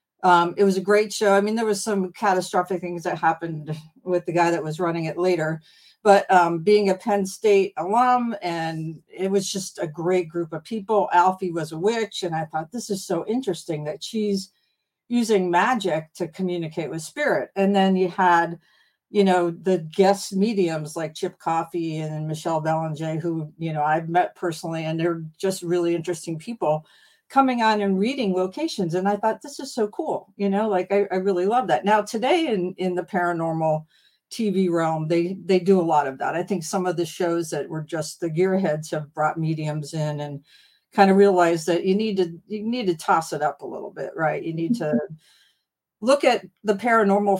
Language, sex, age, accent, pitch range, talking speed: English, female, 50-69, American, 165-205 Hz, 205 wpm